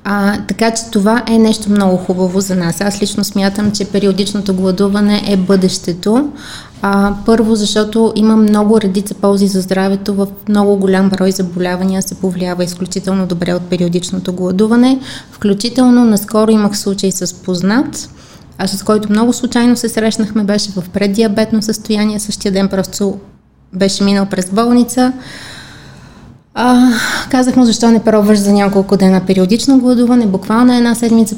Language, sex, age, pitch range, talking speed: Bulgarian, female, 20-39, 185-220 Hz, 145 wpm